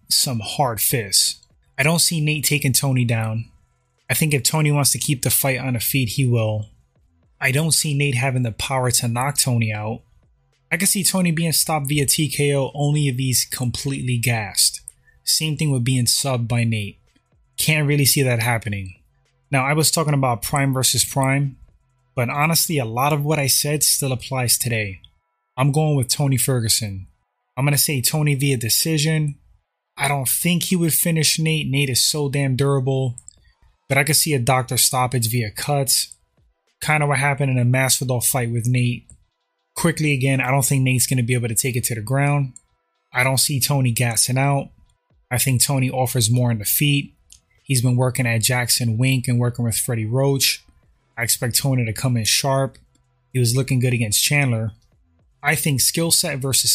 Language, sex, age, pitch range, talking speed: English, male, 20-39, 120-145 Hz, 190 wpm